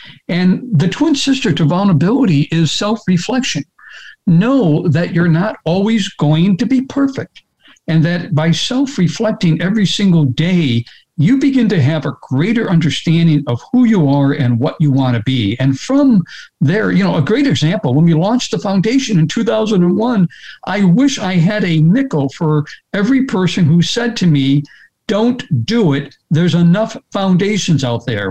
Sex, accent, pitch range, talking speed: male, American, 155-220 Hz, 165 wpm